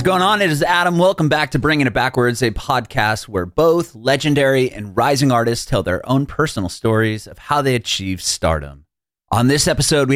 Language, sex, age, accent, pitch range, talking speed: English, male, 30-49, American, 90-120 Hz, 200 wpm